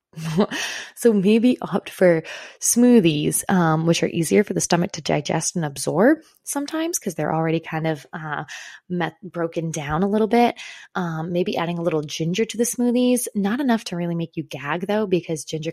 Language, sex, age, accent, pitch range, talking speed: English, female, 20-39, American, 160-205 Hz, 185 wpm